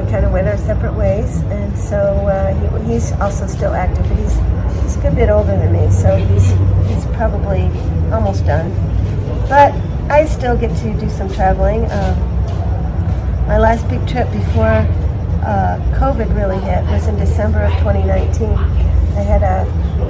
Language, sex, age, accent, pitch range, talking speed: English, female, 40-59, American, 80-95 Hz, 135 wpm